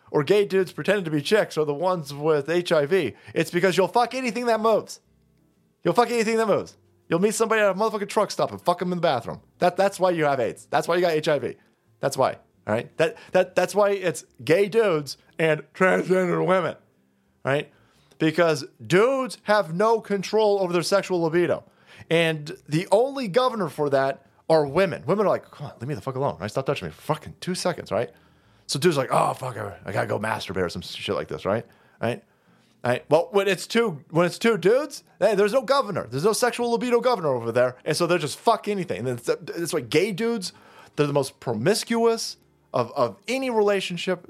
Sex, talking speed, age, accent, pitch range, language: male, 215 wpm, 30-49, American, 155-215 Hz, English